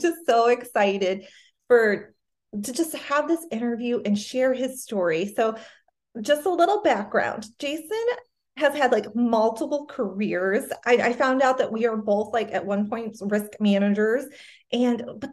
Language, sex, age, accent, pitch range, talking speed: English, female, 30-49, American, 215-285 Hz, 155 wpm